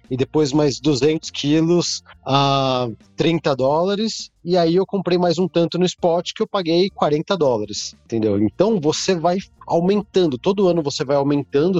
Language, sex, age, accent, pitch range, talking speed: Portuguese, male, 40-59, Brazilian, 125-175 Hz, 165 wpm